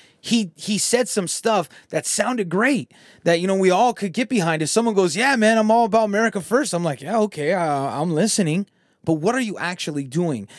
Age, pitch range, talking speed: 20-39, 145-185 Hz, 220 wpm